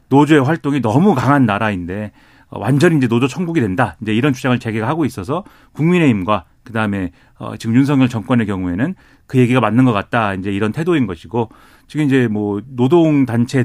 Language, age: Korean, 40-59